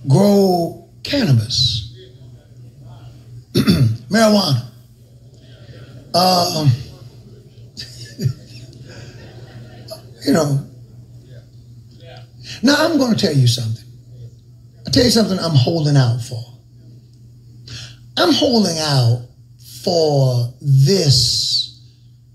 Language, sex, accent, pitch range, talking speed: English, male, American, 120-160 Hz, 70 wpm